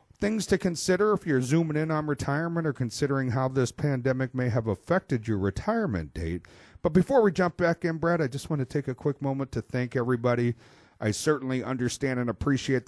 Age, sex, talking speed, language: 40-59, male, 200 wpm, English